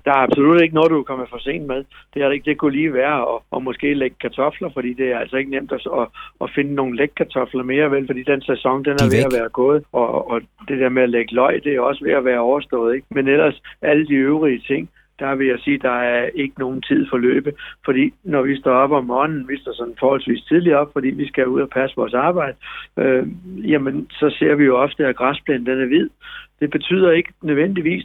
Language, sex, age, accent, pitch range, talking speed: Danish, male, 60-79, native, 130-165 Hz, 250 wpm